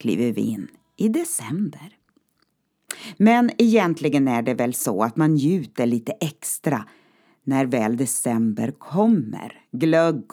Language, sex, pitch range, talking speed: Swedish, female, 125-205 Hz, 120 wpm